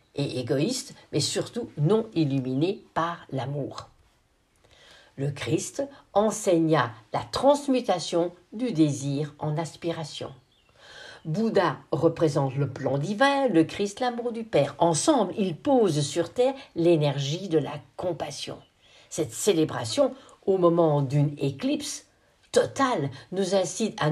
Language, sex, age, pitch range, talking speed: French, female, 60-79, 145-210 Hz, 115 wpm